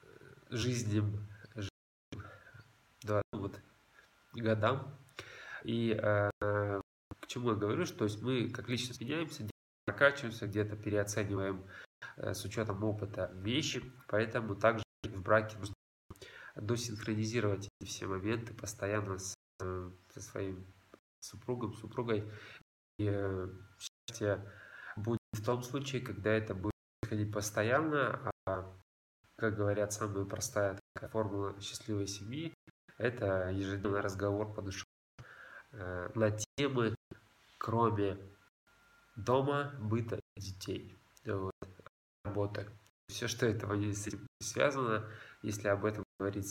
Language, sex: Russian, male